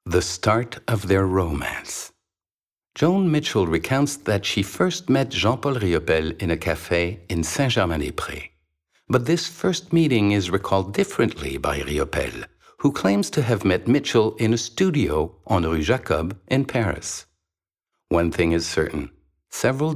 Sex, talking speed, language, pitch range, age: male, 140 wpm, English, 80-120 Hz, 60-79